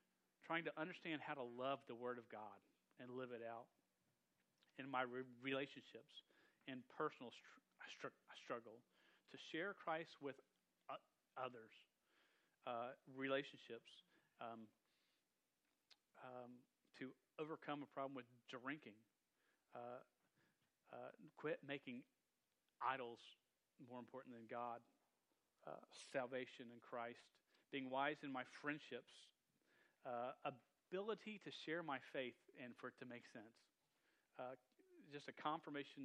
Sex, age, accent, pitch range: male, 40-59, American, 125-150 Hz